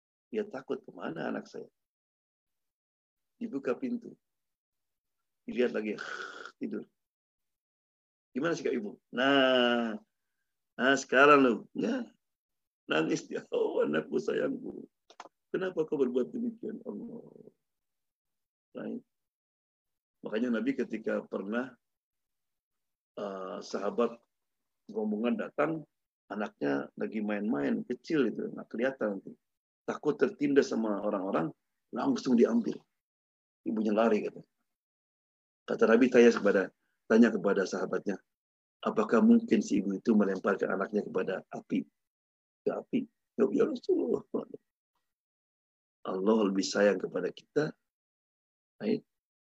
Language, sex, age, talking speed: Indonesian, male, 50-69, 95 wpm